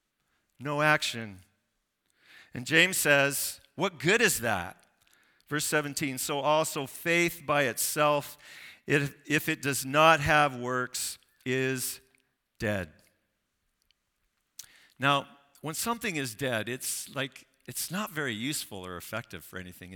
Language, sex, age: English, male, 50-69